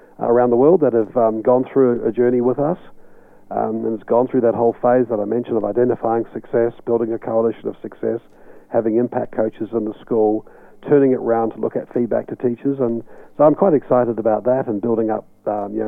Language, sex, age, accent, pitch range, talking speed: English, male, 40-59, Australian, 110-125 Hz, 220 wpm